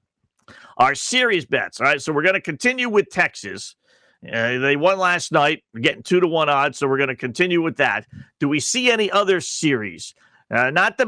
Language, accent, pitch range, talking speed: English, American, 120-175 Hz, 205 wpm